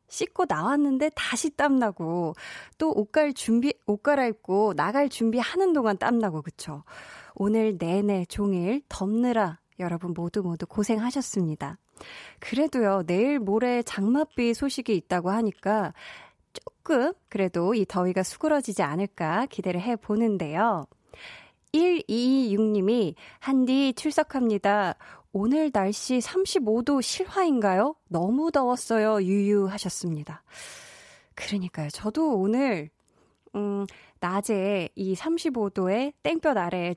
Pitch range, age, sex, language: 195-285 Hz, 20-39, female, Korean